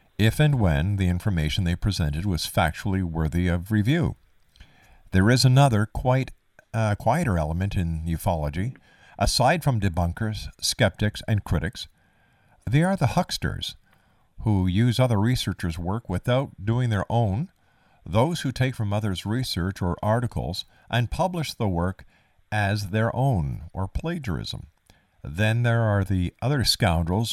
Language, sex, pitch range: English, male, 90-120 Hz